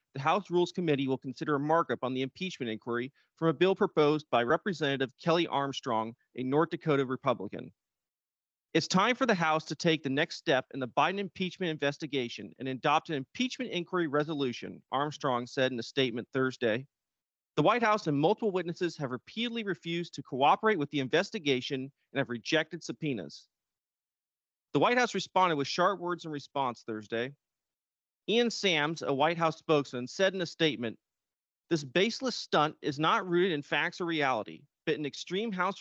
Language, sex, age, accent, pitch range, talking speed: English, male, 30-49, American, 135-180 Hz, 175 wpm